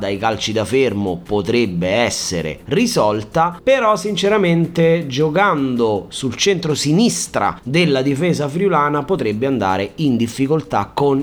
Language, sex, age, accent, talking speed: Italian, male, 30-49, native, 105 wpm